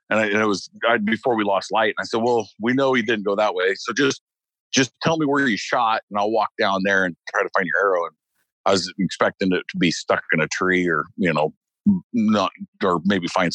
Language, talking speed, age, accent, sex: English, 245 wpm, 50-69, American, male